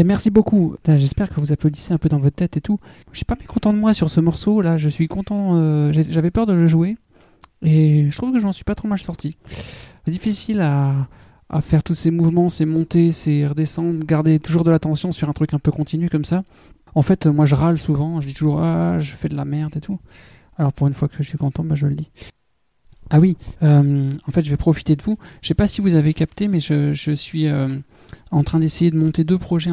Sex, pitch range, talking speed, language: male, 145-170 Hz, 260 wpm, French